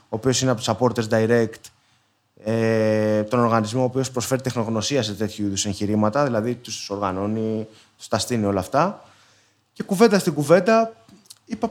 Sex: male